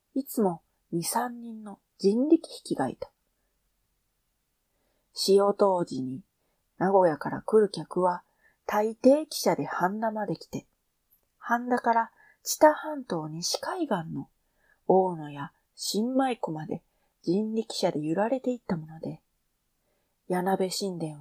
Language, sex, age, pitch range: Japanese, female, 40-59, 175-265 Hz